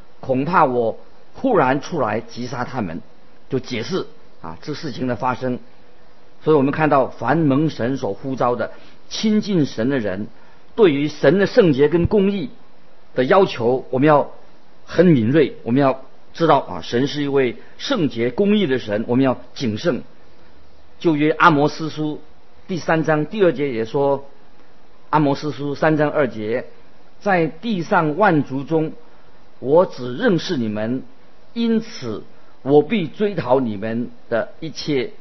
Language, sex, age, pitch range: Chinese, male, 50-69, 125-165 Hz